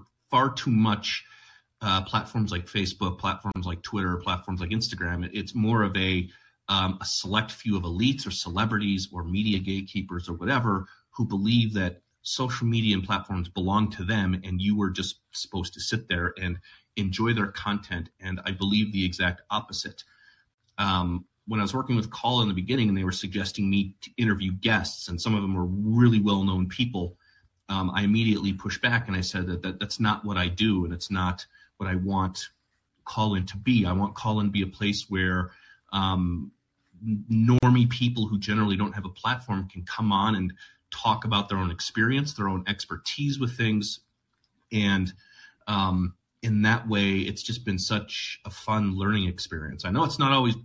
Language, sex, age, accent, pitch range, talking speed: English, male, 30-49, American, 95-110 Hz, 185 wpm